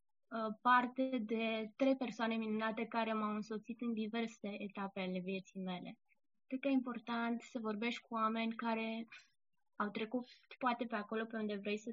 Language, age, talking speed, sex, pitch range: Romanian, 20-39, 160 wpm, female, 220-255 Hz